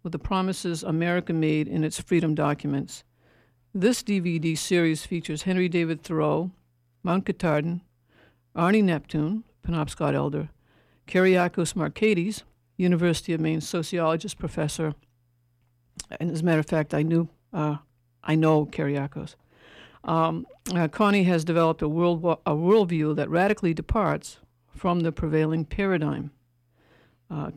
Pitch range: 150-180 Hz